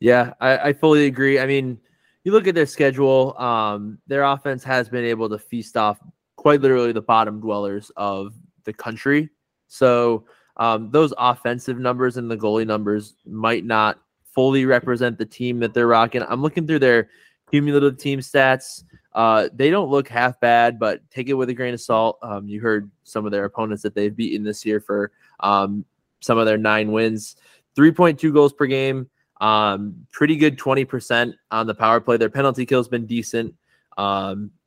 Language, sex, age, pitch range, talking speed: English, male, 20-39, 110-135 Hz, 185 wpm